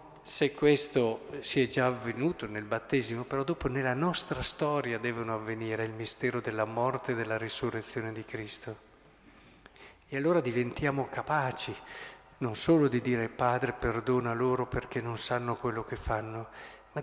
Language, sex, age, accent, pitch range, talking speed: Italian, male, 50-69, native, 120-160 Hz, 150 wpm